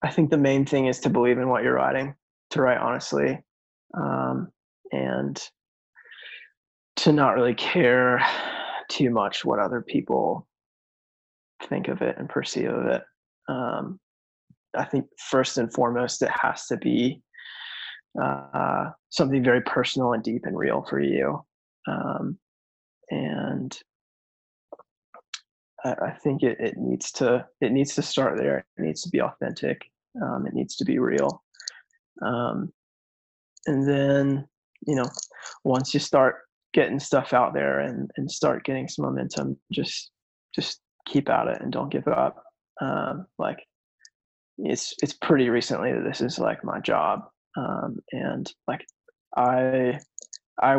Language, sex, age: English, male, 20-39